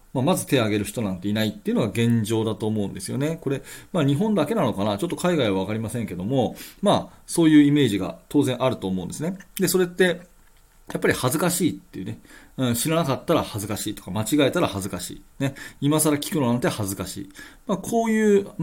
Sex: male